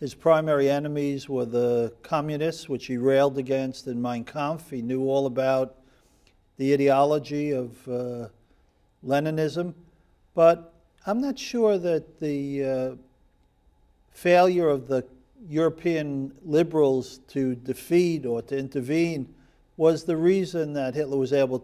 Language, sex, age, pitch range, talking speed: English, male, 50-69, 135-165 Hz, 130 wpm